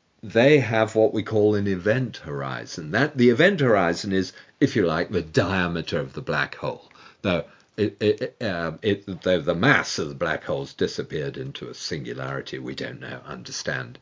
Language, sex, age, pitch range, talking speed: English, male, 50-69, 90-140 Hz, 175 wpm